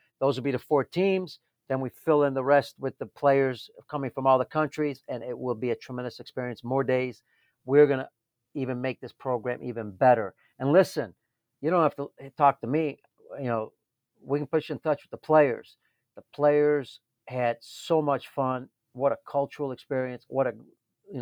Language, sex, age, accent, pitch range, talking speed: English, male, 50-69, American, 125-150 Hz, 195 wpm